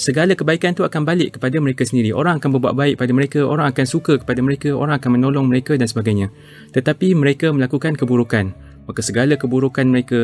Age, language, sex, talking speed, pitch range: 20-39, Malay, male, 195 wpm, 125-145 Hz